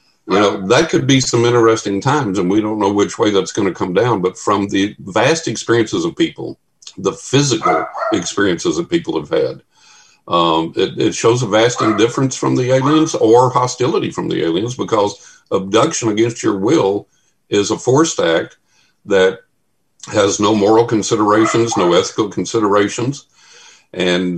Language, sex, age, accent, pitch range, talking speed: English, male, 50-69, American, 100-140 Hz, 160 wpm